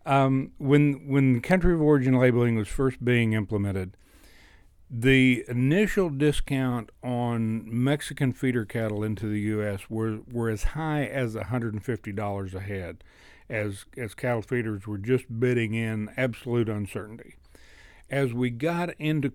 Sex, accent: male, American